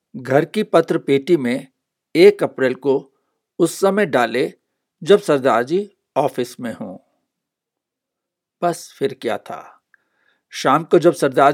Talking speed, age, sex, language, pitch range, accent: 130 wpm, 60-79, male, Hindi, 140-180 Hz, native